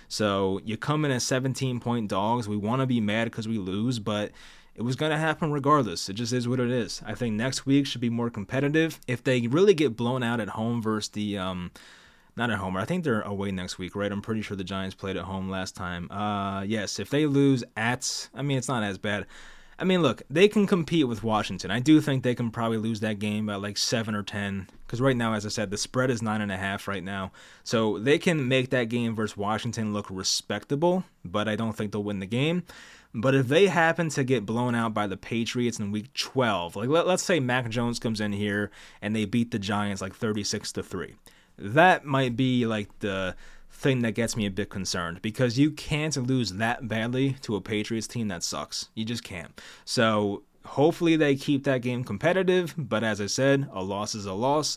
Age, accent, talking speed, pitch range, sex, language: 20-39, American, 220 wpm, 105-135 Hz, male, English